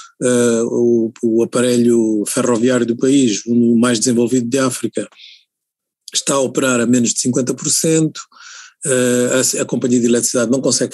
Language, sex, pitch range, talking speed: Portuguese, male, 115-145 Hz, 150 wpm